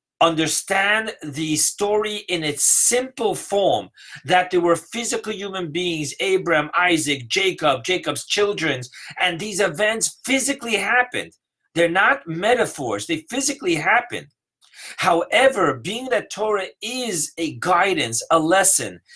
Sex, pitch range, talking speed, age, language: male, 160-210 Hz, 120 wpm, 40-59, English